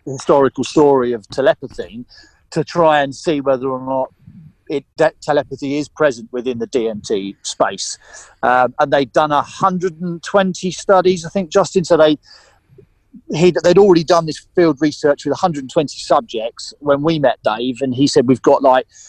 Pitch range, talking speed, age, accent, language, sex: 135-160 Hz, 165 wpm, 40-59, British, English, male